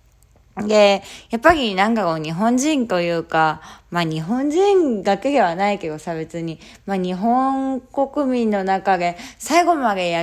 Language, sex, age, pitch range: Japanese, female, 20-39, 175-255 Hz